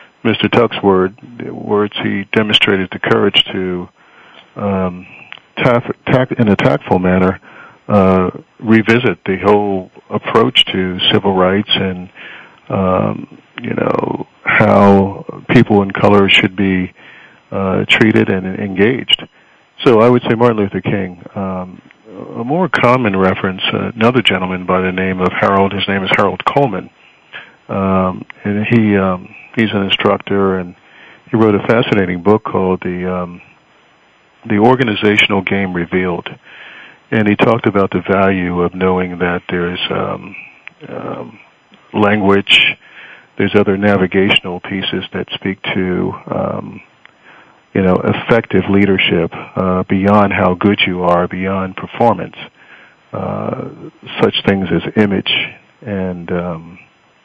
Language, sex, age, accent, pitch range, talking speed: English, male, 50-69, American, 95-105 Hz, 130 wpm